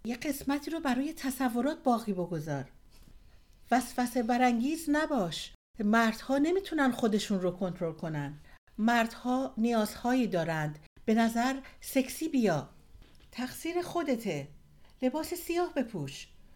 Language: Persian